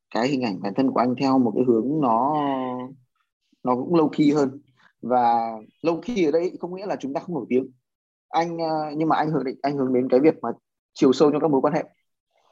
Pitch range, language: 125-155 Hz, Vietnamese